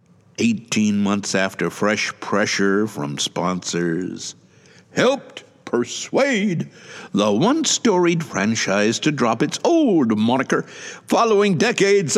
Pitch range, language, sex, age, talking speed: 135-205 Hz, English, male, 60-79, 95 wpm